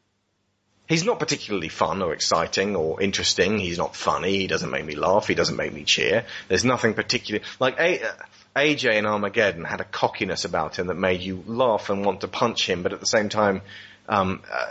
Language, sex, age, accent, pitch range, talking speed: English, male, 30-49, British, 100-140 Hz, 195 wpm